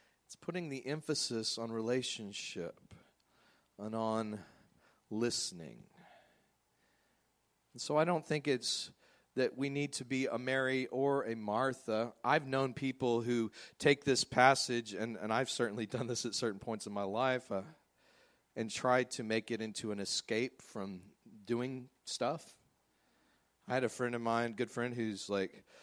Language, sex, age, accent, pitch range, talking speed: English, male, 40-59, American, 100-125 Hz, 150 wpm